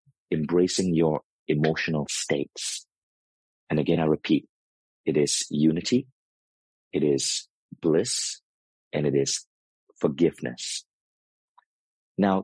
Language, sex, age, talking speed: English, male, 40-59, 90 wpm